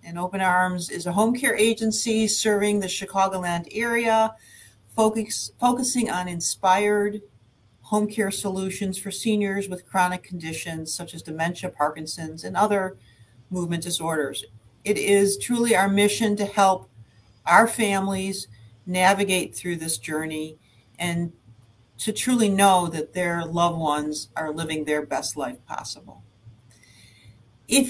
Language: English